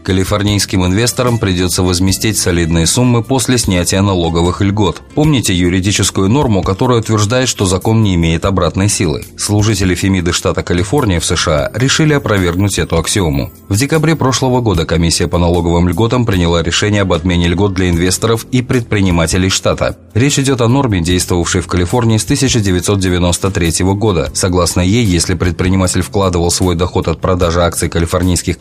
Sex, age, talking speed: male, 30-49, 145 wpm